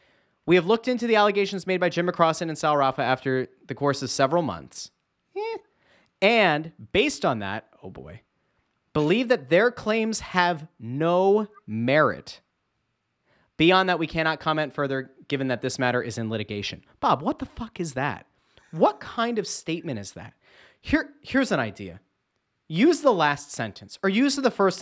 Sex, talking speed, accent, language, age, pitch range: male, 165 wpm, American, English, 30-49, 130-195 Hz